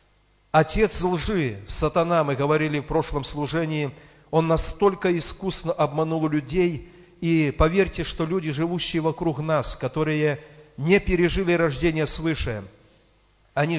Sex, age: male, 40-59